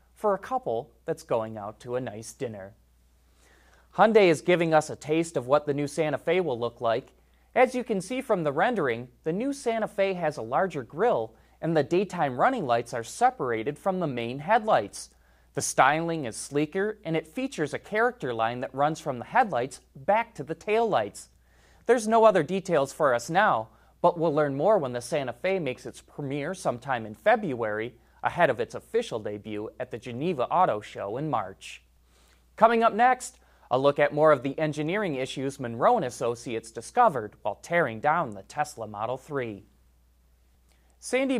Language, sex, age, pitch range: English, male, 30-49, 115-170 Hz